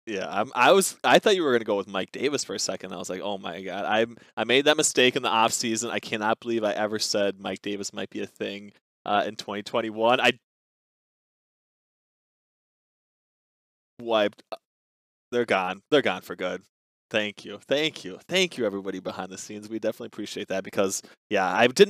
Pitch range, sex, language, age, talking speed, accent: 100-135 Hz, male, English, 20-39, 200 wpm, American